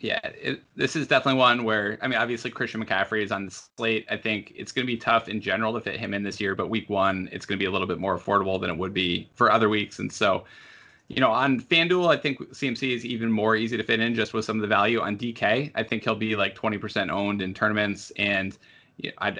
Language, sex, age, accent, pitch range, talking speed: English, male, 20-39, American, 100-115 Hz, 260 wpm